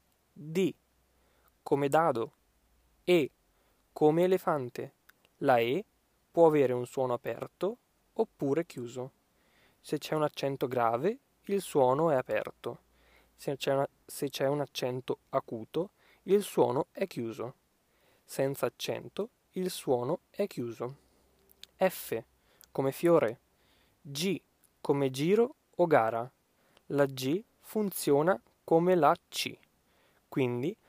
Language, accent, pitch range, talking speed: Italian, native, 120-185 Hz, 105 wpm